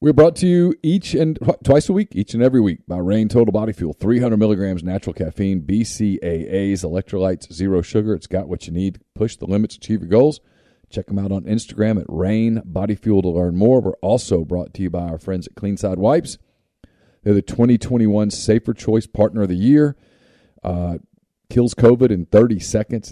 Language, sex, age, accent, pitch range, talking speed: English, male, 40-59, American, 90-115 Hz, 200 wpm